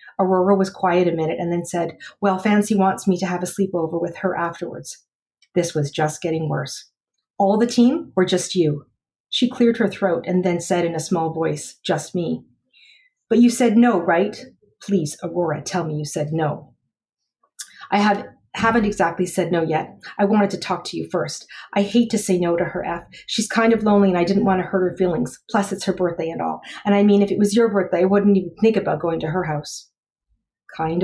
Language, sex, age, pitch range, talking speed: English, female, 40-59, 170-210 Hz, 220 wpm